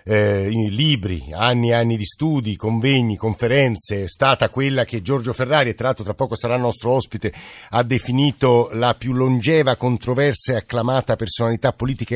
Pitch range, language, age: 105-130 Hz, Italian, 50-69